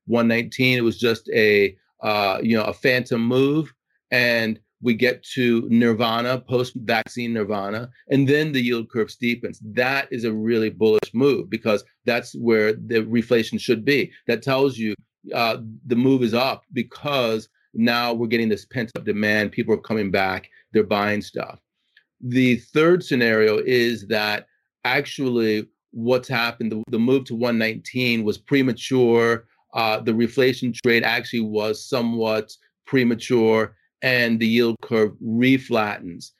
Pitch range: 110-125 Hz